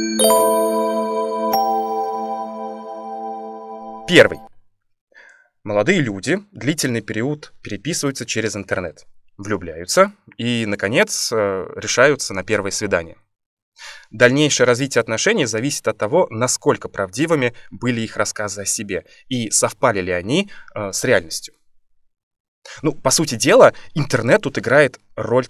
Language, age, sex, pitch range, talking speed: Russian, 20-39, male, 105-135 Hz, 100 wpm